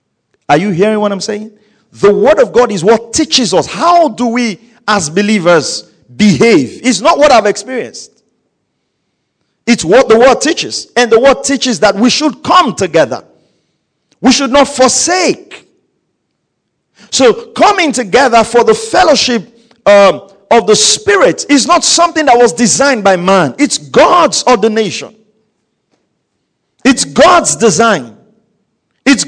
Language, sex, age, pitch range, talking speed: English, male, 50-69, 165-255 Hz, 140 wpm